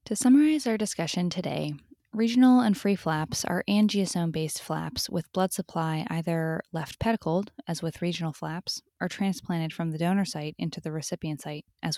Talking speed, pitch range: 165 wpm, 150-185 Hz